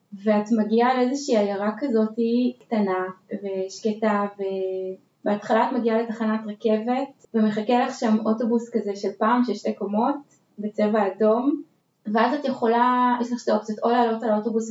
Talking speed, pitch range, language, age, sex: 145 wpm, 210-250 Hz, Hebrew, 20-39, female